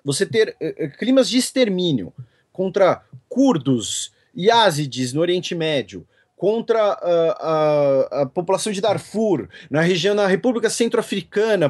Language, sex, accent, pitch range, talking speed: Portuguese, male, Brazilian, 155-245 Hz, 125 wpm